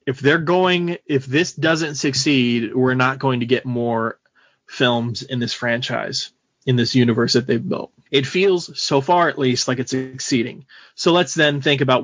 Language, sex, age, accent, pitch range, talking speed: English, male, 30-49, American, 125-145 Hz, 185 wpm